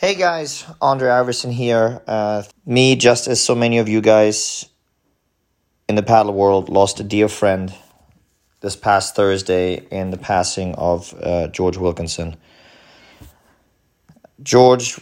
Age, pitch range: 30-49, 95-110 Hz